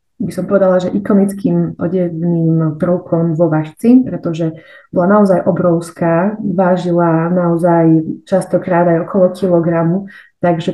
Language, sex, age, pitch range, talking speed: Slovak, female, 30-49, 165-190 Hz, 110 wpm